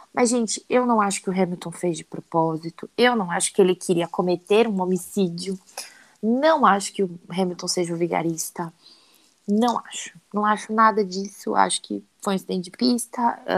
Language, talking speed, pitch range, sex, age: Portuguese, 180 wpm, 195-255 Hz, female, 20-39